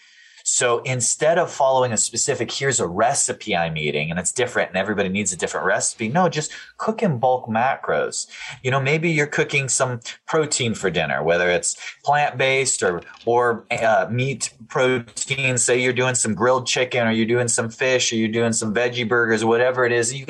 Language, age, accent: English, 30-49, American